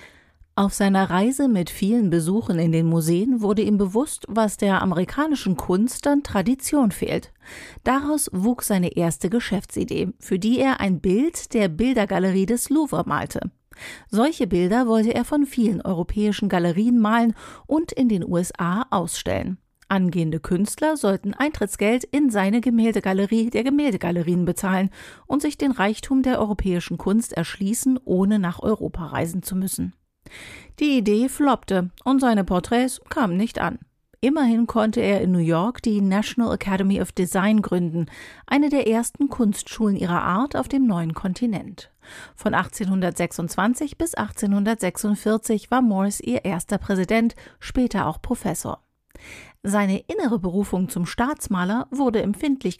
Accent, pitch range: German, 185-245 Hz